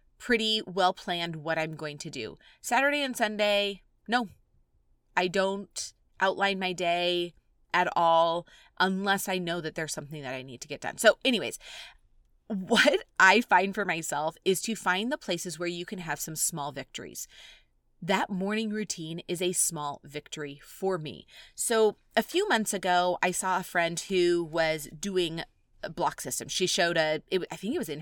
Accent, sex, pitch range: American, female, 160-195 Hz